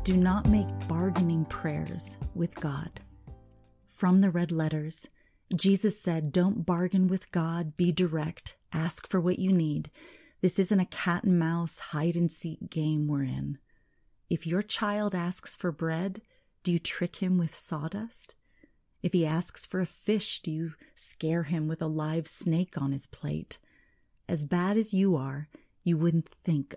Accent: American